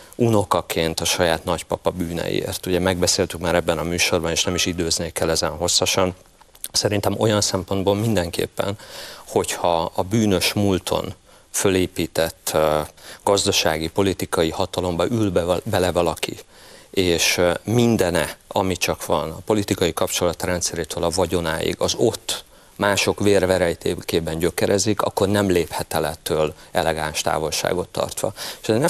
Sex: male